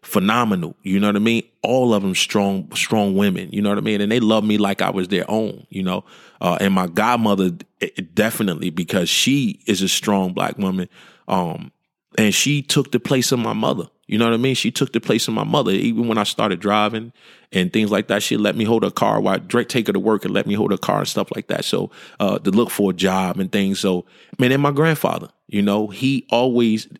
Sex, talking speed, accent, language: male, 245 wpm, American, English